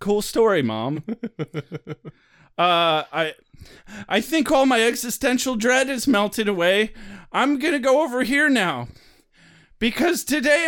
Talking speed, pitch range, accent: 130 wpm, 180-275 Hz, American